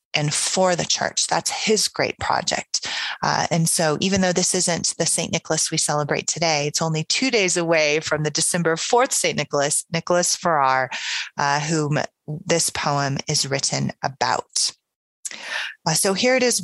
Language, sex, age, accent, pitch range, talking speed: English, female, 30-49, American, 155-190 Hz, 165 wpm